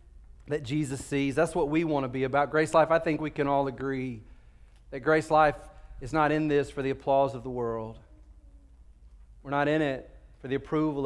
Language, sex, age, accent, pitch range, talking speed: English, male, 30-49, American, 130-165 Hz, 205 wpm